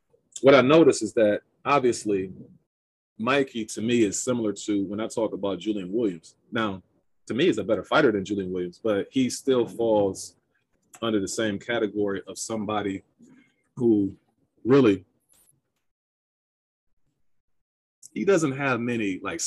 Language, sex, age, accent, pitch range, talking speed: English, male, 30-49, American, 100-130 Hz, 140 wpm